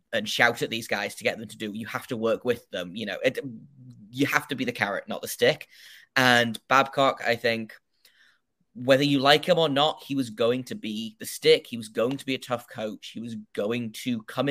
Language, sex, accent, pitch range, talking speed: English, male, British, 115-150 Hz, 240 wpm